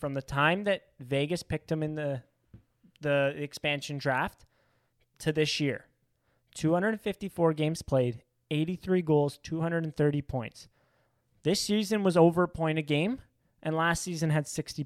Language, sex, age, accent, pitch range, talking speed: English, male, 20-39, American, 145-180 Hz, 140 wpm